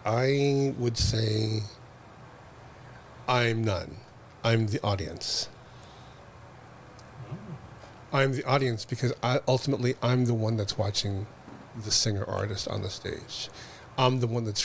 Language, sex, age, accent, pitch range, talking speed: English, male, 40-59, American, 110-130 Hz, 120 wpm